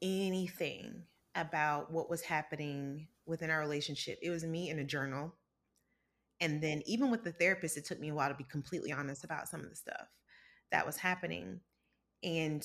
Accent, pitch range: American, 150-175 Hz